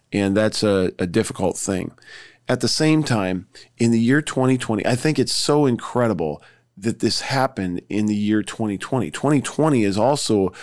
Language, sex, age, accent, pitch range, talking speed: English, male, 40-59, American, 100-120 Hz, 165 wpm